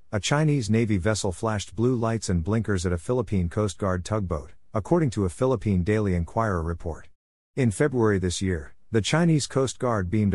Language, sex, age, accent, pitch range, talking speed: English, male, 50-69, American, 90-115 Hz, 180 wpm